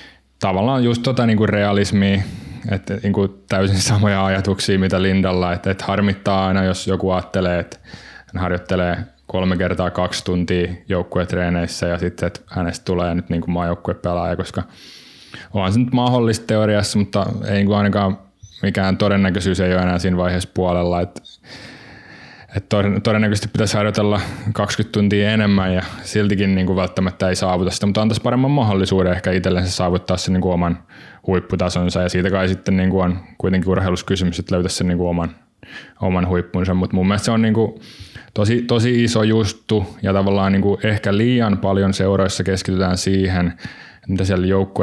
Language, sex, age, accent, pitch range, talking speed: Finnish, male, 20-39, native, 90-105 Hz, 165 wpm